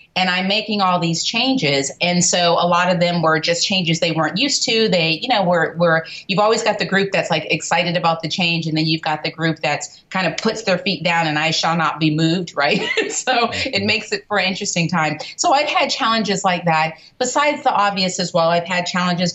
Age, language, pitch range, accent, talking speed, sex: 30-49, English, 160-210 Hz, American, 240 wpm, female